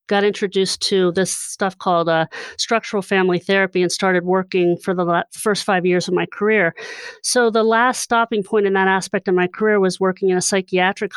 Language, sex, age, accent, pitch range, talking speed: English, female, 40-59, American, 175-210 Hz, 205 wpm